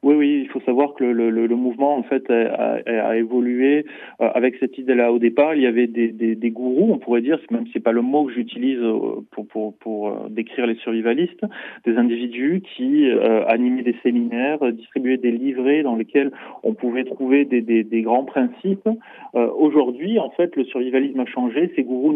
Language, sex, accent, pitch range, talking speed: Italian, male, French, 120-145 Hz, 210 wpm